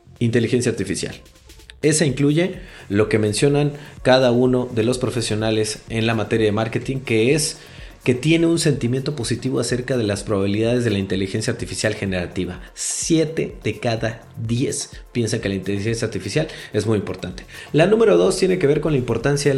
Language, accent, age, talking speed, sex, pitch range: Spanish, Mexican, 30-49, 170 wpm, male, 110-140 Hz